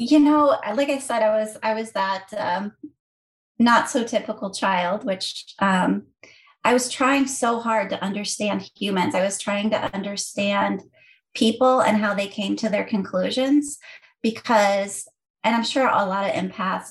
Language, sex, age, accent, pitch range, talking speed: English, female, 30-49, American, 195-240 Hz, 165 wpm